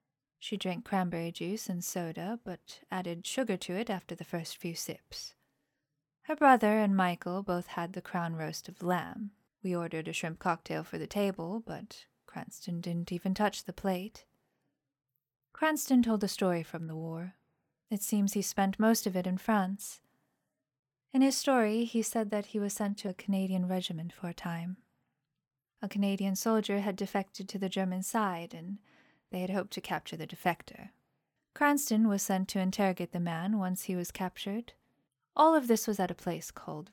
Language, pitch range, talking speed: English, 175-215 Hz, 180 wpm